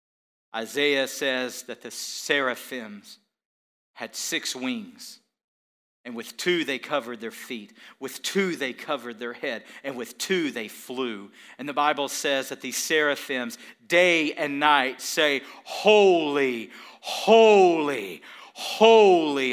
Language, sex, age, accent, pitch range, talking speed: English, male, 40-59, American, 110-150 Hz, 125 wpm